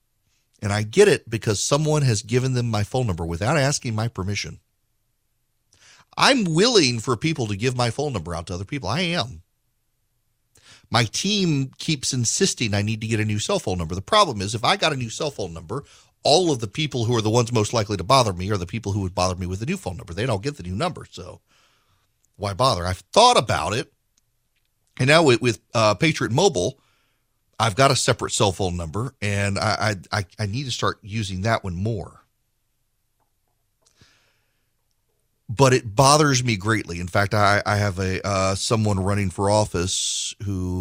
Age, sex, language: 40-59, male, English